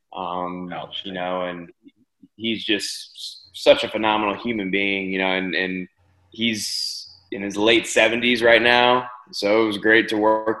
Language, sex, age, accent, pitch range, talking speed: English, male, 20-39, American, 95-115 Hz, 160 wpm